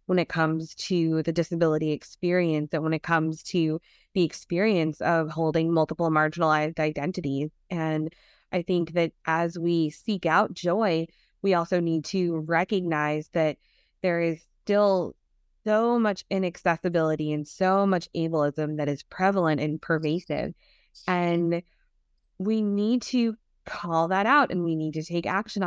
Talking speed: 145 wpm